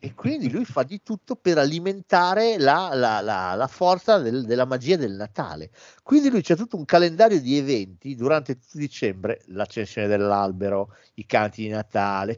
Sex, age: male, 50-69